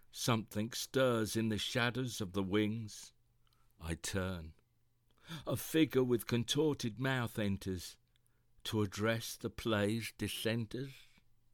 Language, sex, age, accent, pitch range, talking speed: English, male, 60-79, British, 105-130 Hz, 110 wpm